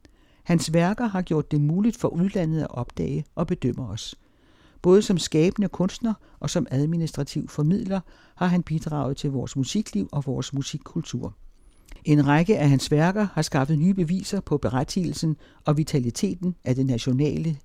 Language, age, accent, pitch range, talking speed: Danish, 60-79, native, 135-180 Hz, 155 wpm